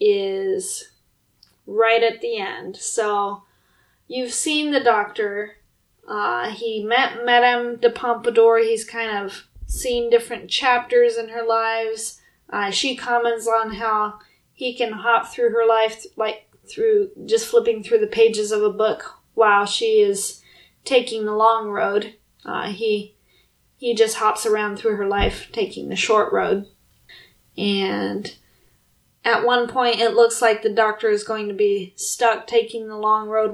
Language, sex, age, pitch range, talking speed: English, female, 20-39, 215-250 Hz, 150 wpm